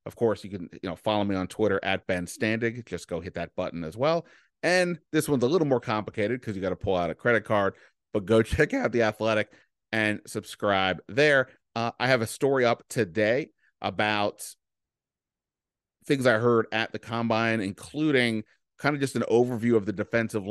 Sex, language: male, English